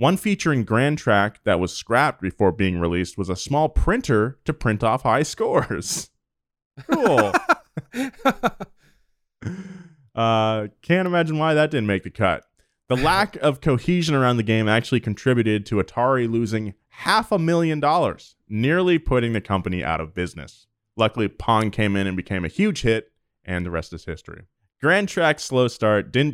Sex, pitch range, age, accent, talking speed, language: male, 95-145 Hz, 20-39, American, 160 wpm, English